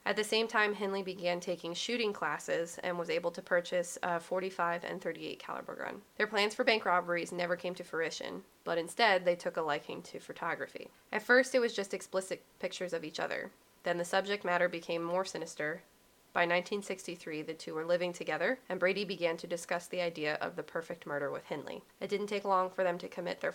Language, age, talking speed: English, 20-39, 215 wpm